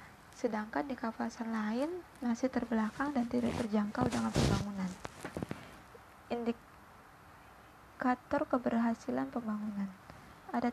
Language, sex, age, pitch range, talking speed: Indonesian, female, 20-39, 225-260 Hz, 85 wpm